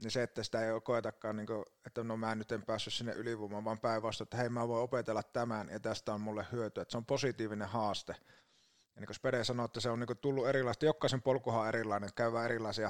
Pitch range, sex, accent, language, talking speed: 115-135 Hz, male, native, Finnish, 220 wpm